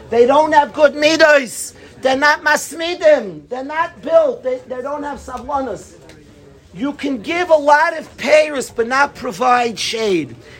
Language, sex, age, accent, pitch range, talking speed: English, male, 50-69, American, 245-320 Hz, 155 wpm